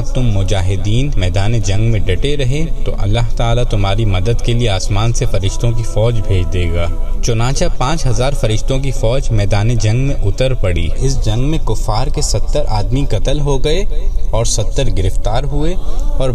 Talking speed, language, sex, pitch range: 175 wpm, Urdu, male, 100-130 Hz